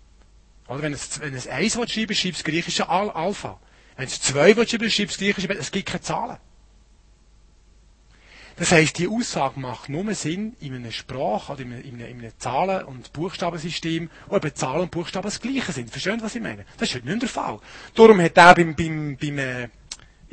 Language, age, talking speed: German, 30-49, 205 wpm